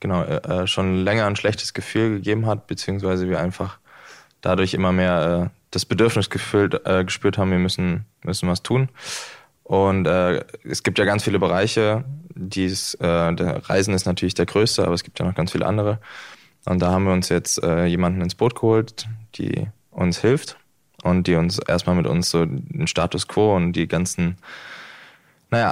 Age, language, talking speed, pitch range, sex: 20-39, German, 180 wpm, 90-105 Hz, male